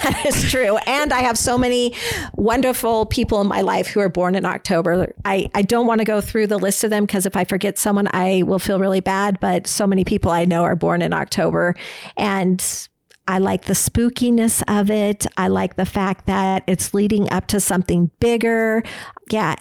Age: 50-69